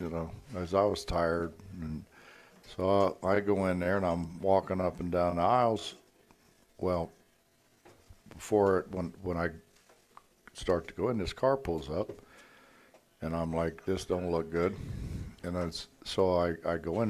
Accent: American